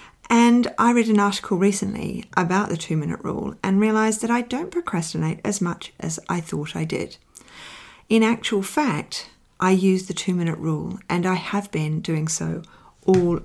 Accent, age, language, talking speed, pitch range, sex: Australian, 40-59, English, 170 wpm, 160-205 Hz, female